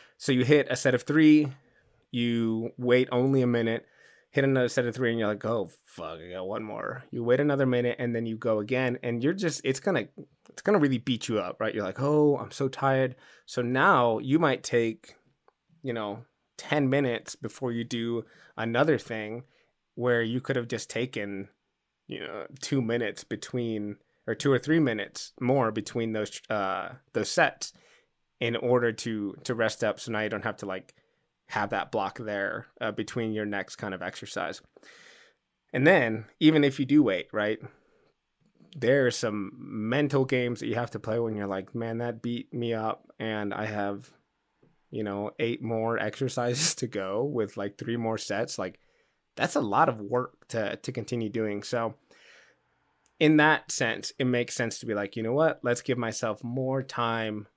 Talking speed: 190 wpm